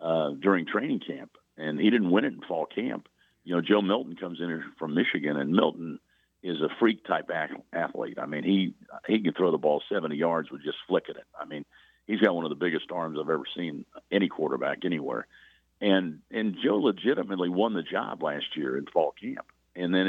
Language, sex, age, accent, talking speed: English, male, 50-69, American, 205 wpm